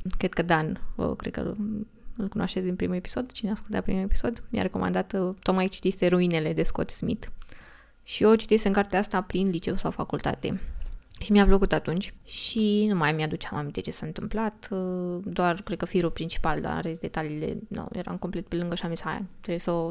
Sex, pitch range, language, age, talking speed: female, 175-210 Hz, Romanian, 20-39, 190 wpm